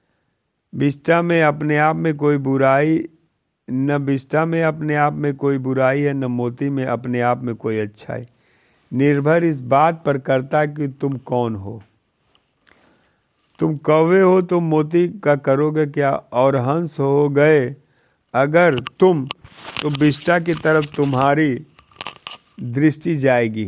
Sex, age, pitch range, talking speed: male, 50-69, 125-155 Hz, 135 wpm